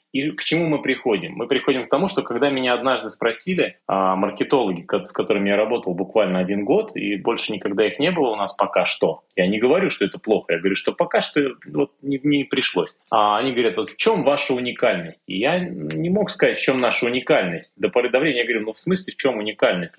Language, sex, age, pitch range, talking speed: Russian, male, 30-49, 105-145 Hz, 230 wpm